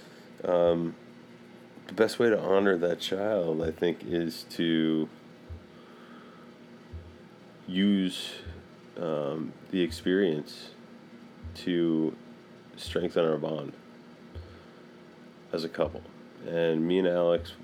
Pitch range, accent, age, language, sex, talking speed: 75-85 Hz, American, 30-49, English, male, 90 wpm